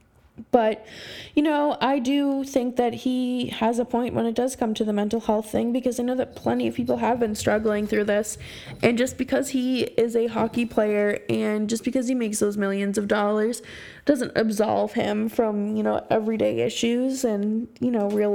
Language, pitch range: English, 210-250 Hz